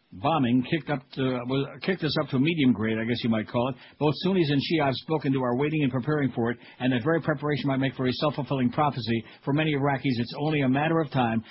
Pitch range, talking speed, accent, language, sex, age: 125-145 Hz, 245 wpm, American, English, male, 60-79